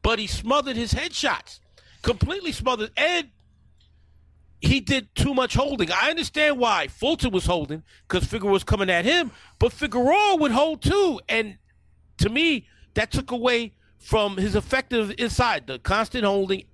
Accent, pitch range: American, 175-260 Hz